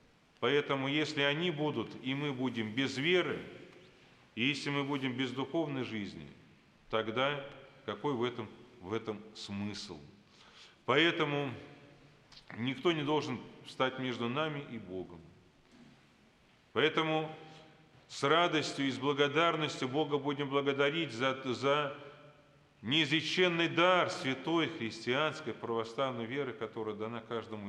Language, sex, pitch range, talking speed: Russian, male, 115-145 Hz, 110 wpm